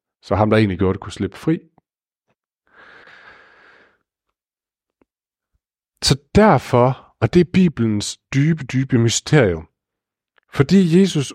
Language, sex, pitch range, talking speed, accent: Danish, male, 115-160 Hz, 105 wpm, native